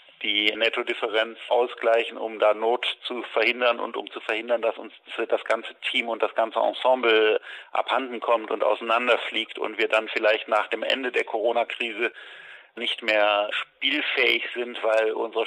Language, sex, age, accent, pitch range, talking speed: German, male, 40-59, German, 110-120 Hz, 155 wpm